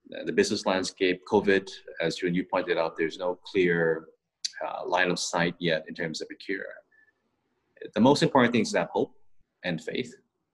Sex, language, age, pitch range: male, Thai, 30-49, 90-120 Hz